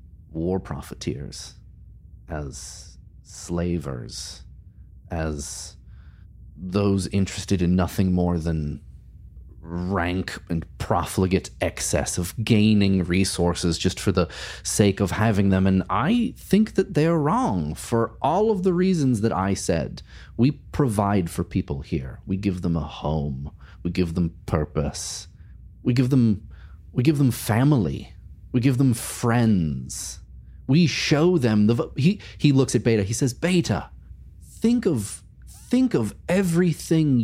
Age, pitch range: 30-49, 85-130 Hz